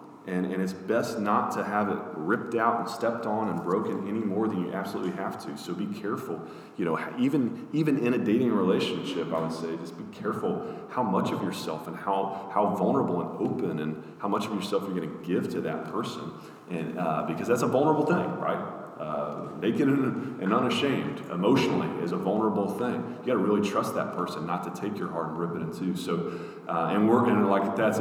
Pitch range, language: 85-95 Hz, English